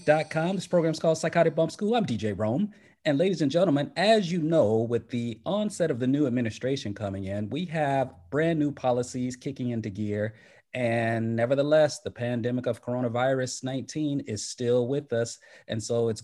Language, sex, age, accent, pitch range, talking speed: English, male, 30-49, American, 110-155 Hz, 180 wpm